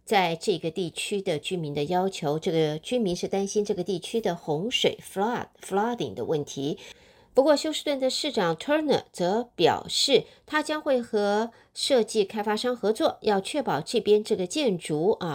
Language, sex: Chinese, female